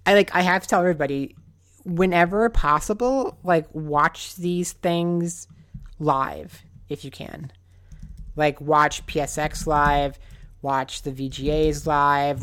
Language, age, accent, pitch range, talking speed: English, 30-49, American, 140-170 Hz, 120 wpm